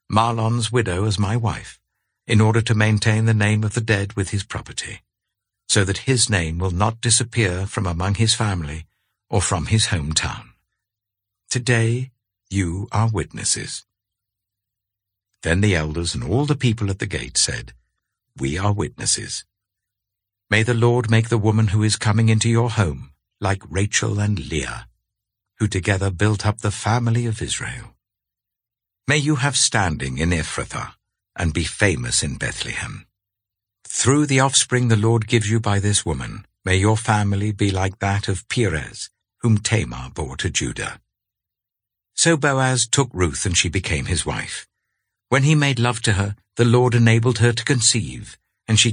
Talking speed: 160 wpm